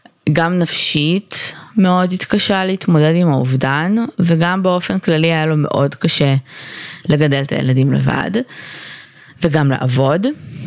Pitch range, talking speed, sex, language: 145-180 Hz, 110 wpm, female, Hebrew